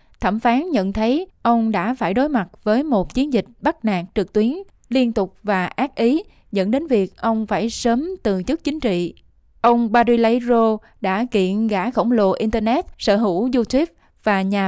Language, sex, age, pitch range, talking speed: Vietnamese, female, 20-39, 200-245 Hz, 185 wpm